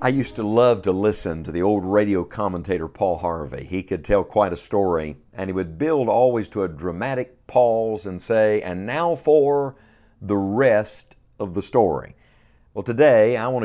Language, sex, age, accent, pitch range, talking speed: English, male, 50-69, American, 95-125 Hz, 185 wpm